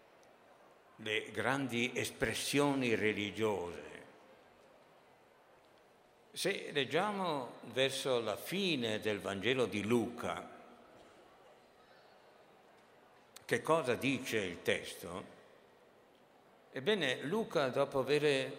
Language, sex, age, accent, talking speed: Italian, male, 60-79, native, 70 wpm